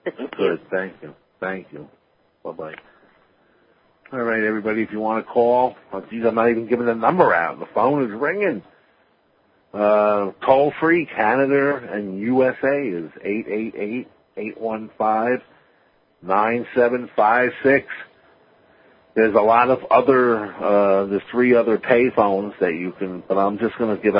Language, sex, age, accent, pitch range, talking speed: English, male, 50-69, American, 90-115 Hz, 130 wpm